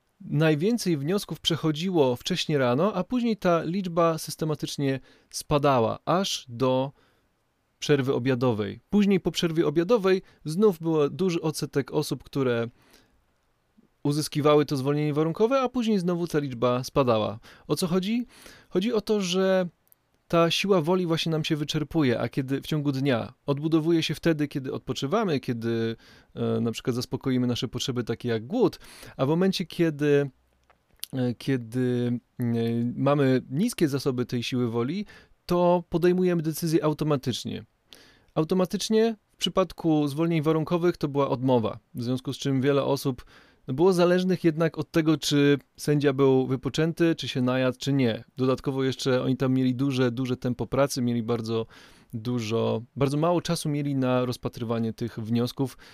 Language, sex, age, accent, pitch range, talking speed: Polish, male, 20-39, native, 125-165 Hz, 140 wpm